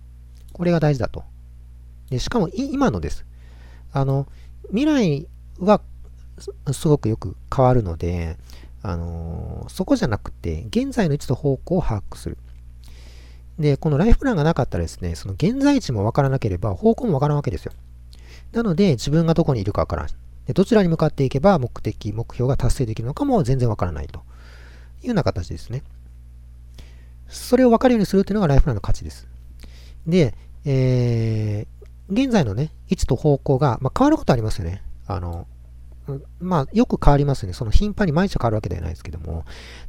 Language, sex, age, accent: Japanese, male, 40-59, native